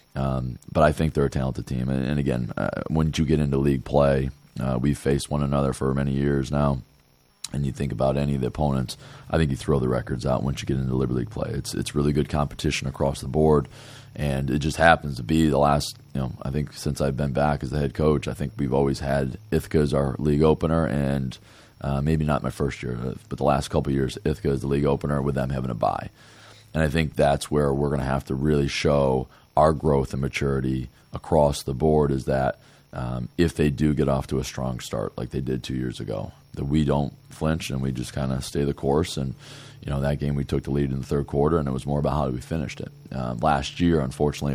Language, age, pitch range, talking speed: English, 20-39, 65-75 Hz, 250 wpm